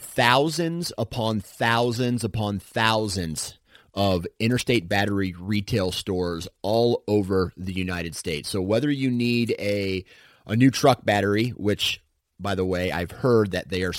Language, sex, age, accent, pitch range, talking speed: English, male, 30-49, American, 90-110 Hz, 140 wpm